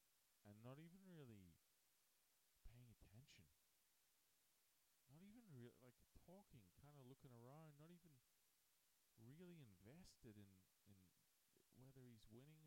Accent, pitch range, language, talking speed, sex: American, 95-130 Hz, English, 110 wpm, male